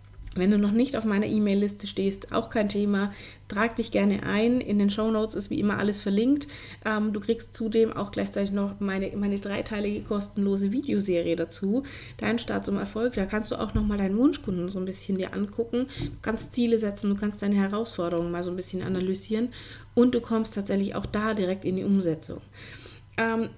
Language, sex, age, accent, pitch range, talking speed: German, female, 30-49, German, 190-225 Hz, 195 wpm